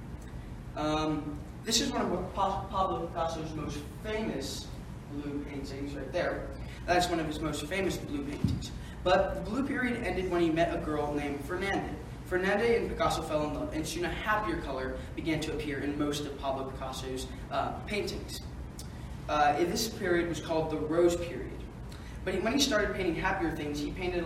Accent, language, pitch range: American, English, 145-180 Hz